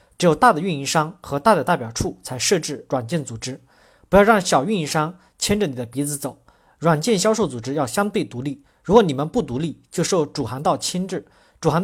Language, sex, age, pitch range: Chinese, male, 40-59, 135-200 Hz